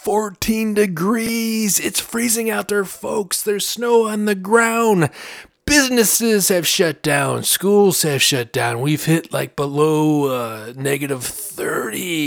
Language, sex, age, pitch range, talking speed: English, male, 30-49, 145-220 Hz, 125 wpm